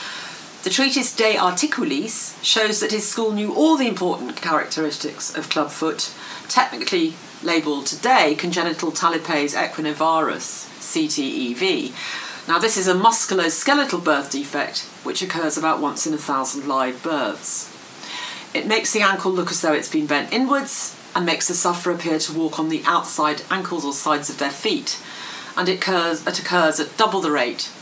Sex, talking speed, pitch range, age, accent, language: female, 160 wpm, 155-225 Hz, 40-59, British, English